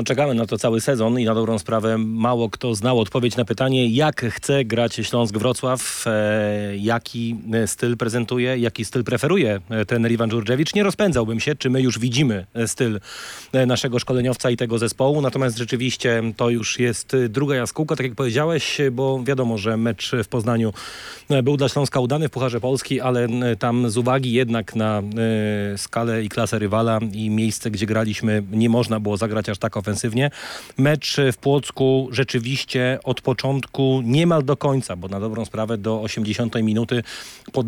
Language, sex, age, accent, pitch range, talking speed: Polish, male, 30-49, native, 110-130 Hz, 165 wpm